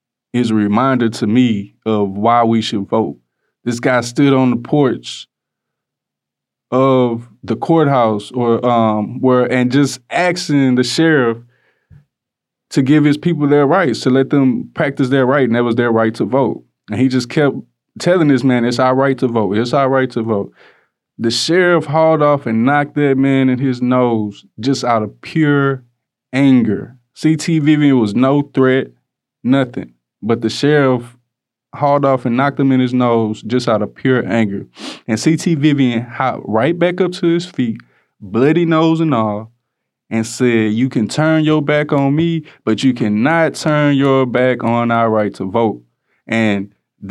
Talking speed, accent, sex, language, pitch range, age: 170 wpm, American, male, English, 115-145 Hz, 20-39